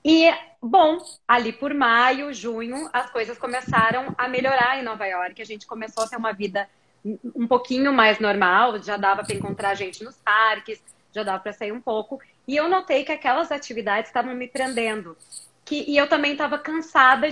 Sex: female